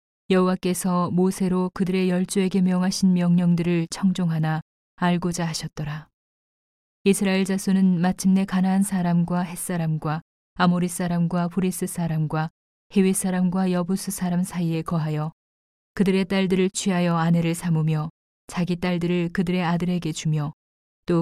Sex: female